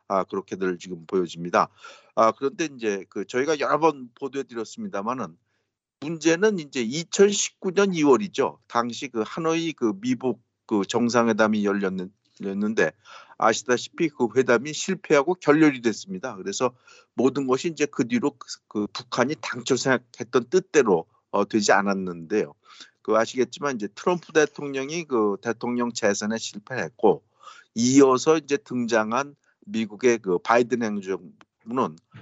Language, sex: Korean, male